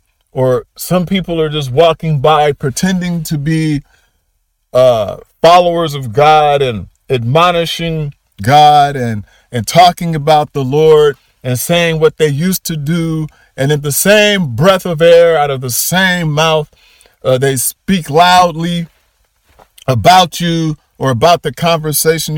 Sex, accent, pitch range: male, American, 140-185 Hz